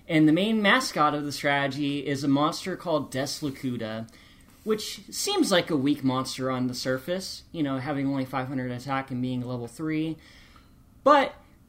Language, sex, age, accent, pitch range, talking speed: English, male, 20-39, American, 130-175 Hz, 165 wpm